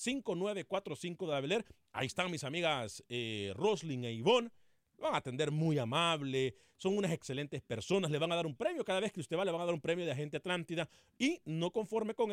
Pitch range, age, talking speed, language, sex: 135-190 Hz, 40-59, 215 wpm, Spanish, male